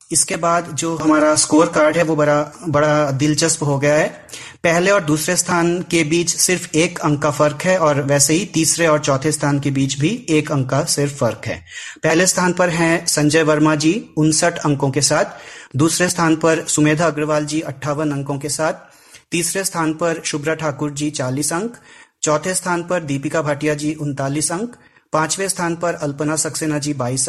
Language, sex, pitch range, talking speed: Hindi, male, 150-170 Hz, 190 wpm